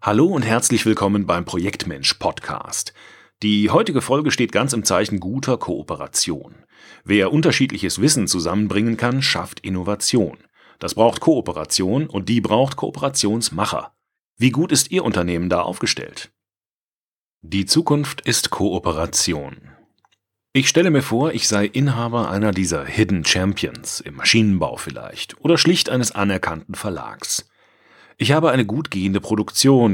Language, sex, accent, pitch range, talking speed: German, male, German, 100-130 Hz, 130 wpm